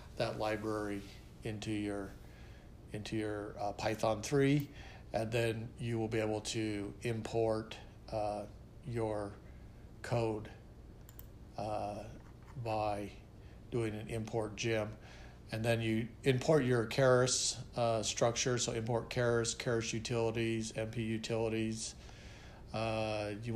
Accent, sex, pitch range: American, male, 110-120 Hz